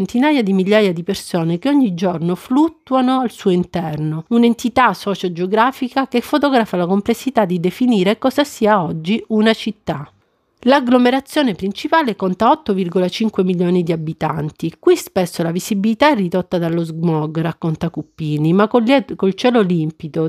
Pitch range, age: 175-240 Hz, 50-69